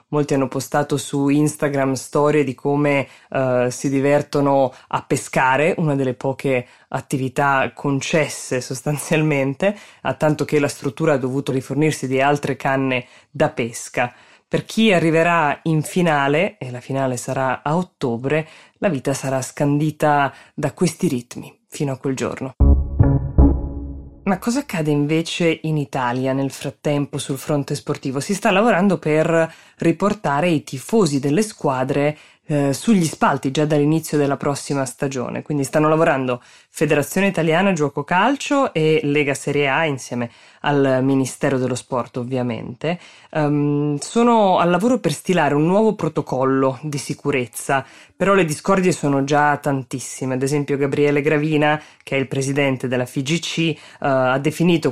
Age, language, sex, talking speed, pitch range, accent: 20-39, Italian, female, 140 wpm, 135-160 Hz, native